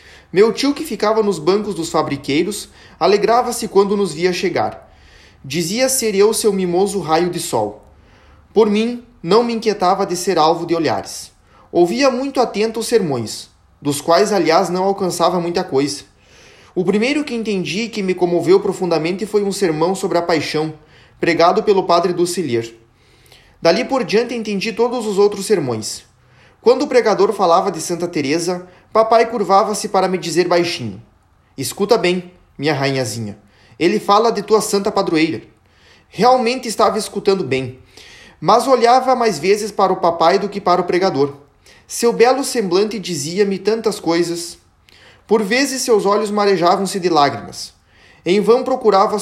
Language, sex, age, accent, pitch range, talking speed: Portuguese, male, 20-39, Brazilian, 150-215 Hz, 150 wpm